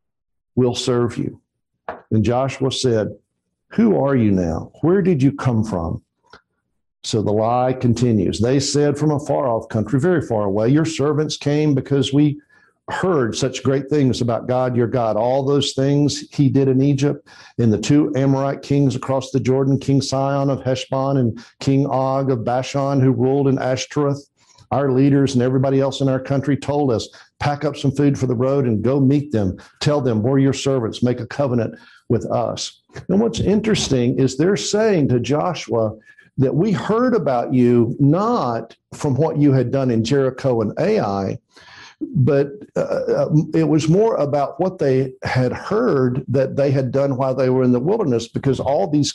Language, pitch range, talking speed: English, 125-145 Hz, 180 wpm